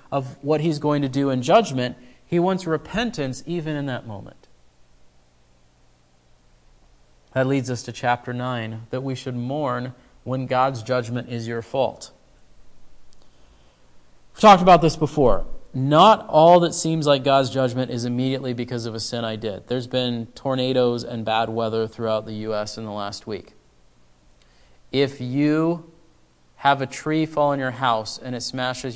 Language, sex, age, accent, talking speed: English, male, 30-49, American, 160 wpm